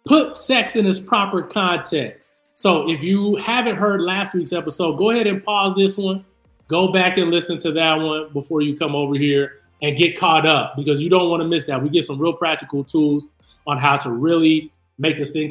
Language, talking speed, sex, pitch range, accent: English, 215 wpm, male, 150-190 Hz, American